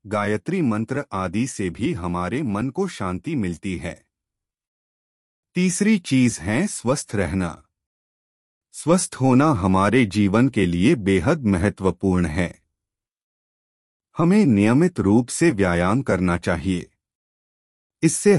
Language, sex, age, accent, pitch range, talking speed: Hindi, male, 30-49, native, 90-140 Hz, 110 wpm